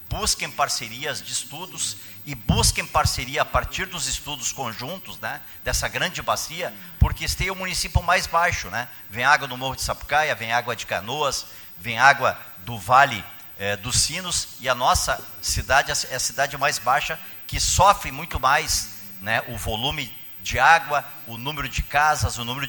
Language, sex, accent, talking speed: Portuguese, male, Brazilian, 170 wpm